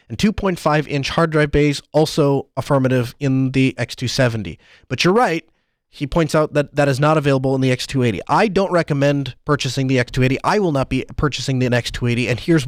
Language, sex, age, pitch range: English, male, 30-49, 130-170 Hz